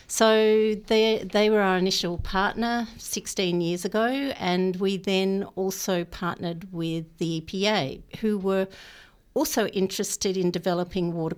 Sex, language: female, English